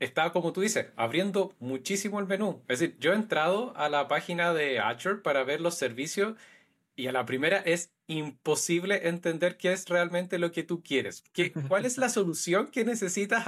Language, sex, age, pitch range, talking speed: Spanish, male, 30-49, 135-180 Hz, 190 wpm